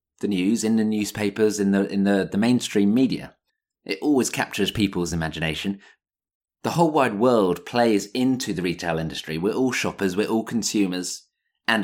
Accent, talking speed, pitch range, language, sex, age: British, 165 wpm, 95-120 Hz, English, male, 30-49